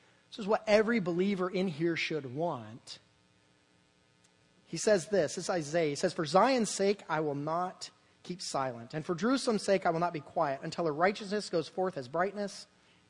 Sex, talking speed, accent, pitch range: male, 190 wpm, American, 155-220 Hz